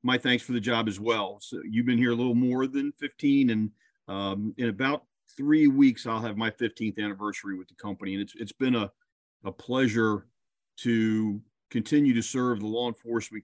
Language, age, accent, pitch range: English, 40-59, American, 110-145 Hz